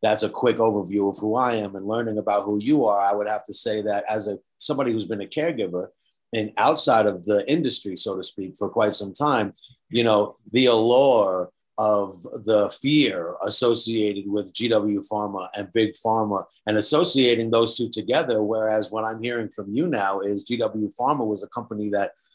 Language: English